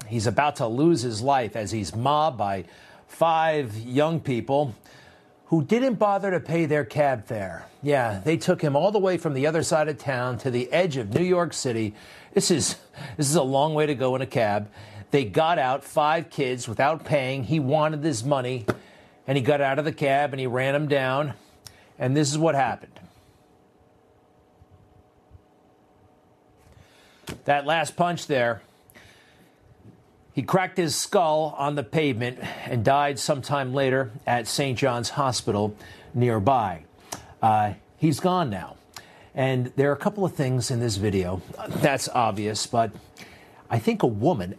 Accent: American